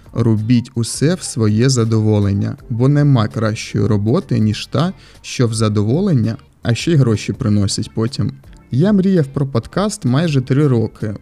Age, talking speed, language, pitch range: 30-49, 145 wpm, Ukrainian, 110-140 Hz